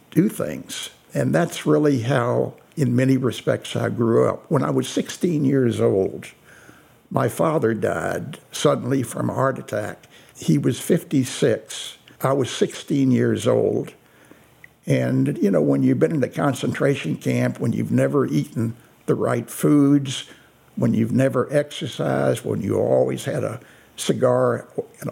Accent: American